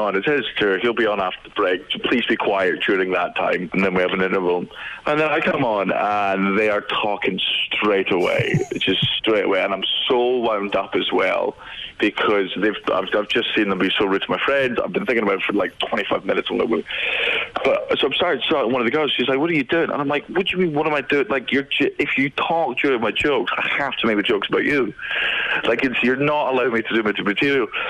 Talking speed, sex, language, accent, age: 255 wpm, male, English, British, 20-39